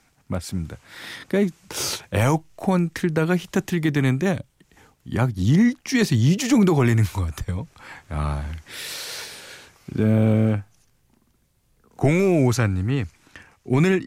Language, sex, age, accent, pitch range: Korean, male, 40-59, native, 105-170 Hz